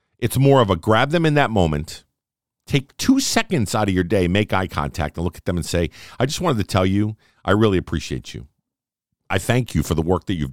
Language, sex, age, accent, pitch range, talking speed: English, male, 50-69, American, 85-120 Hz, 245 wpm